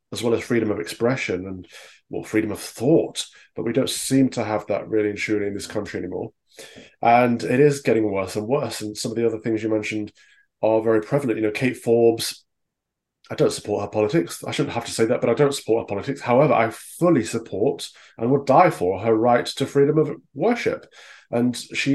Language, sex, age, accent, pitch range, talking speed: Finnish, male, 20-39, British, 105-135 Hz, 215 wpm